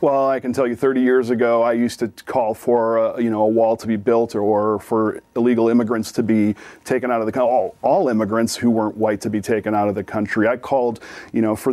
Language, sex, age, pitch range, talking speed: English, male, 40-59, 110-140 Hz, 255 wpm